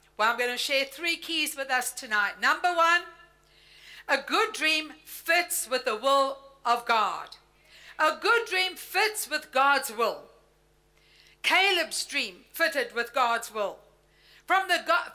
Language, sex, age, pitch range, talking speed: English, female, 60-79, 275-360 Hz, 145 wpm